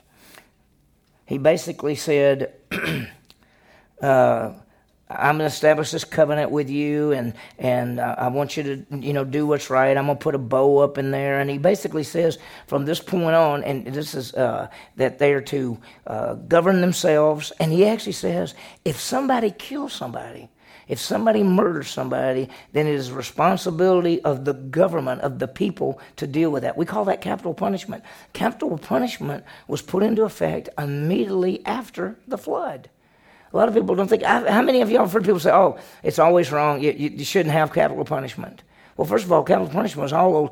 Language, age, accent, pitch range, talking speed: English, 40-59, American, 145-185 Hz, 190 wpm